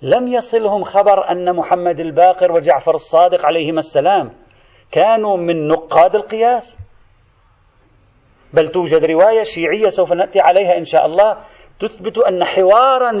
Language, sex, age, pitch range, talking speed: Arabic, male, 40-59, 165-230 Hz, 125 wpm